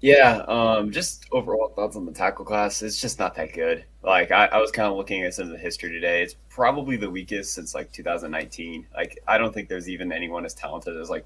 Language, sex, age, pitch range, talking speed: English, male, 20-39, 90-115 Hz, 250 wpm